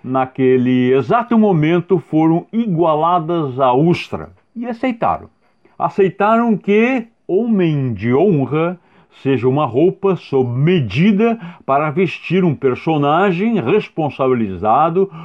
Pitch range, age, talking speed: 130-190 Hz, 60-79, 95 wpm